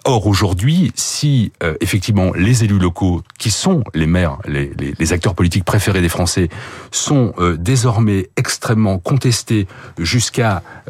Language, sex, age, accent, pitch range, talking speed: French, male, 40-59, French, 90-125 Hz, 150 wpm